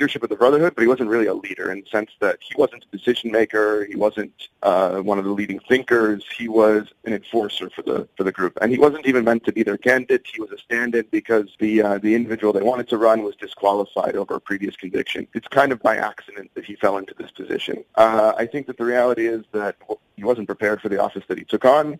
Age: 30-49